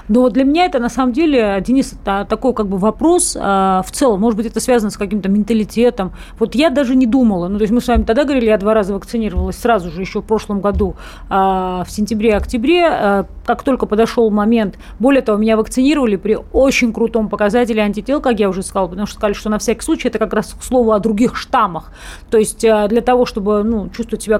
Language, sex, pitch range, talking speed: Russian, female, 210-255 Hz, 225 wpm